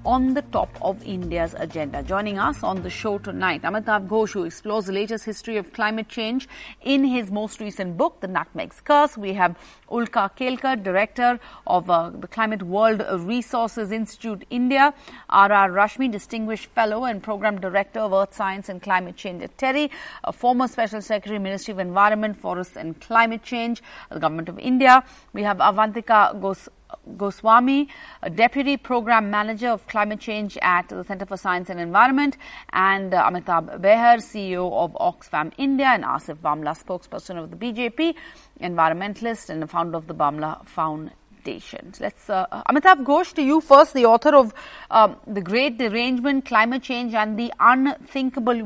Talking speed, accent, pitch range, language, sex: 160 wpm, Indian, 195-255 Hz, English, female